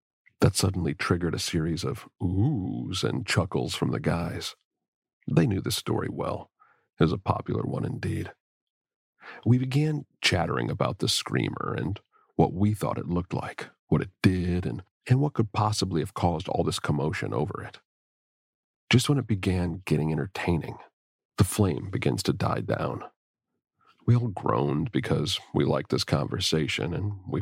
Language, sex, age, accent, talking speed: English, male, 40-59, American, 160 wpm